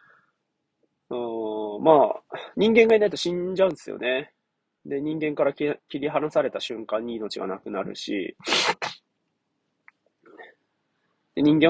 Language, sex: Japanese, male